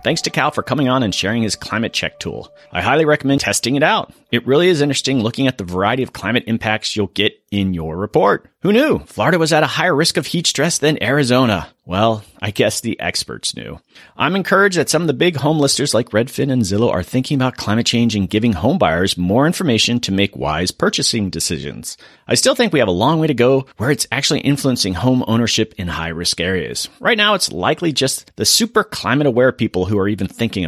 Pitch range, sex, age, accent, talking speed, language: 100-140 Hz, male, 30-49, American, 225 wpm, English